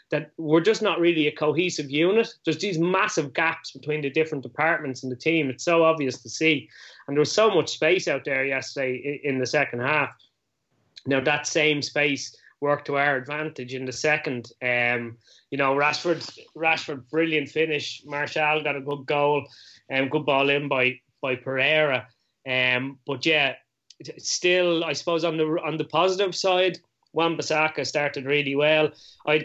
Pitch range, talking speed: 130-155 Hz, 175 wpm